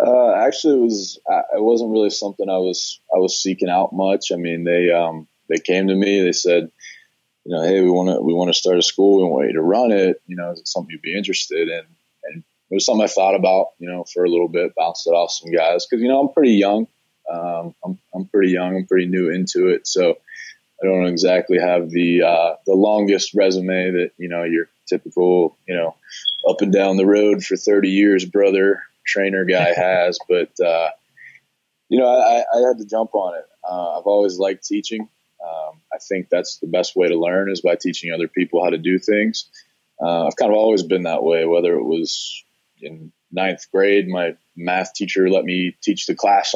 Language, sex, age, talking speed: English, male, 20-39, 220 wpm